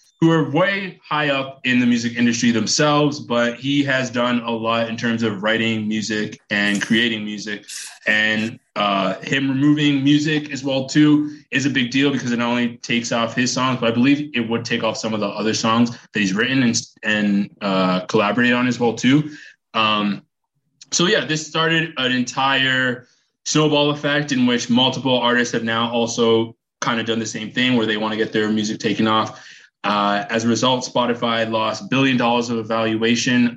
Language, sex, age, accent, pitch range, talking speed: English, male, 20-39, American, 110-135 Hz, 195 wpm